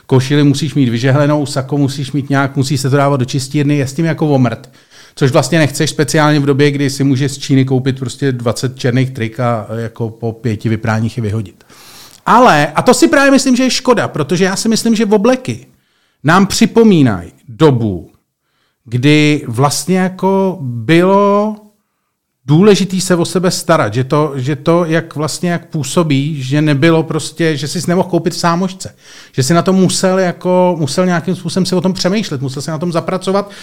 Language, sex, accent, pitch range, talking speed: Czech, male, native, 140-195 Hz, 185 wpm